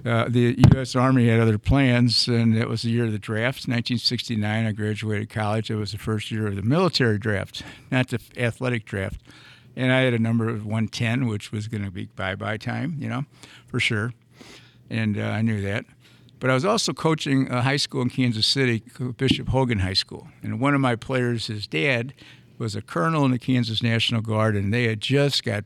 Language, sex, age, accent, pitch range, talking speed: English, male, 60-79, American, 110-125 Hz, 210 wpm